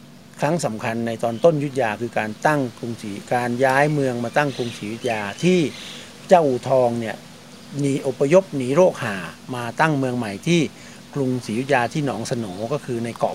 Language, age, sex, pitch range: Thai, 60-79, male, 120-150 Hz